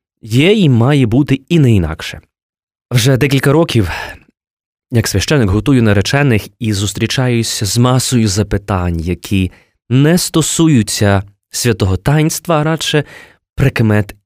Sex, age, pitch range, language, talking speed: male, 20-39, 100-140 Hz, Ukrainian, 115 wpm